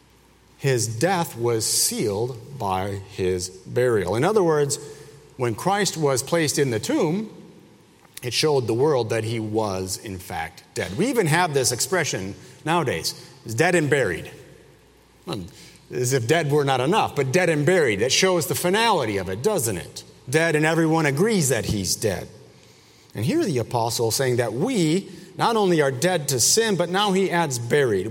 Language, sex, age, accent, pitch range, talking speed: English, male, 40-59, American, 120-165 Hz, 170 wpm